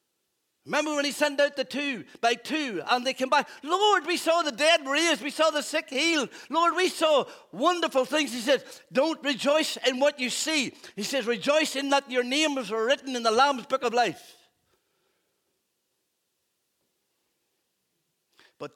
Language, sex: English, male